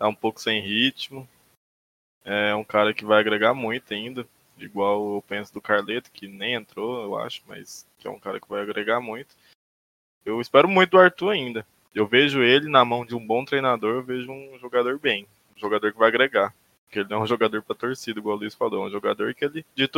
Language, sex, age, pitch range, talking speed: Portuguese, male, 20-39, 110-135 Hz, 220 wpm